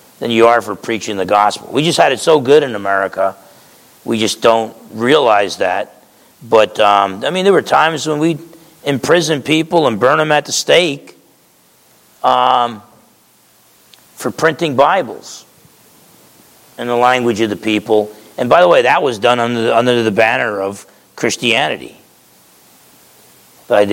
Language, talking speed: English, 155 wpm